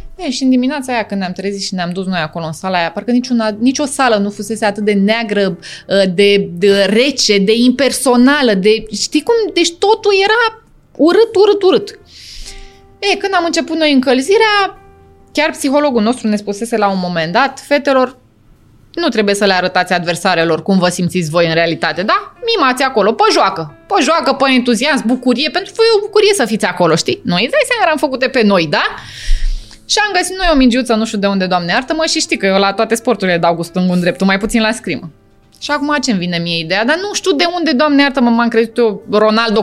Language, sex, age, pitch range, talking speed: Romanian, female, 20-39, 200-295 Hz, 210 wpm